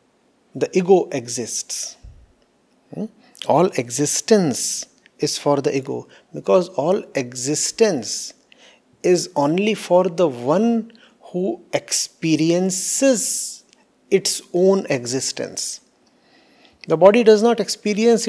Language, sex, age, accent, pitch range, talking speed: English, male, 50-69, Indian, 160-225 Hz, 90 wpm